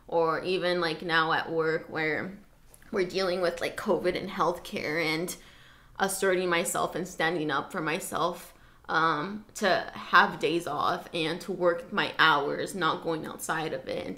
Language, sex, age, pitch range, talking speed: English, female, 20-39, 160-185 Hz, 160 wpm